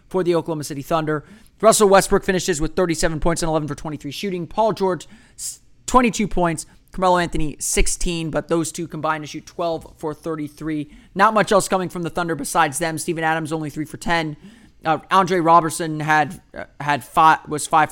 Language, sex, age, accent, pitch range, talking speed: English, male, 30-49, American, 150-180 Hz, 185 wpm